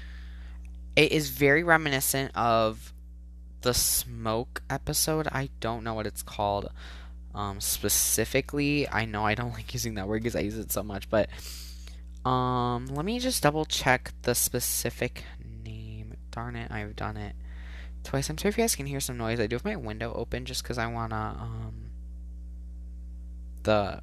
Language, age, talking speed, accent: English, 10-29, 165 wpm, American